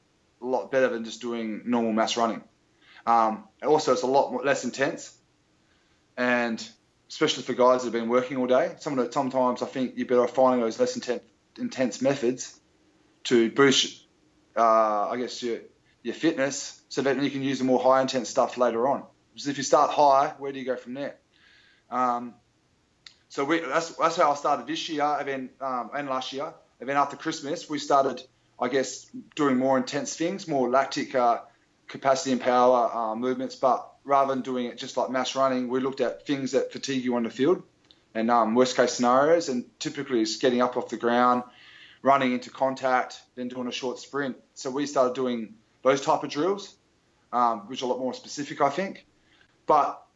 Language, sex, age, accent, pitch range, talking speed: English, male, 20-39, Australian, 120-140 Hz, 195 wpm